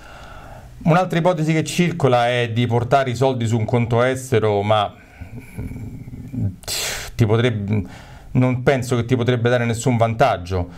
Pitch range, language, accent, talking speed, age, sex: 105-135 Hz, Italian, native, 135 wpm, 40-59, male